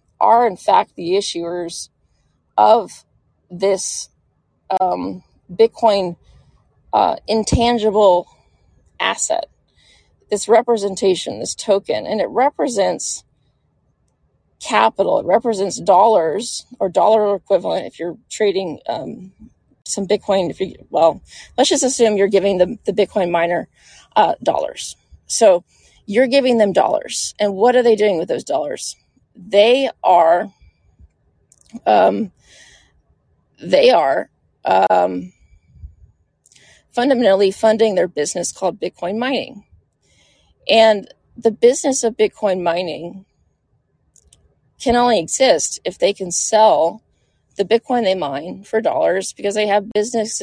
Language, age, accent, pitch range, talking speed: English, 30-49, American, 180-225 Hz, 115 wpm